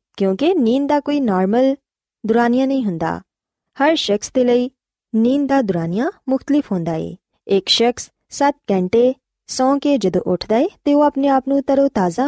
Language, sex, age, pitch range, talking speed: Punjabi, female, 20-39, 185-265 Hz, 160 wpm